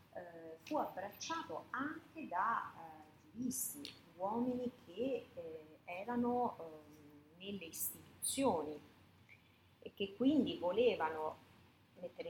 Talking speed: 95 wpm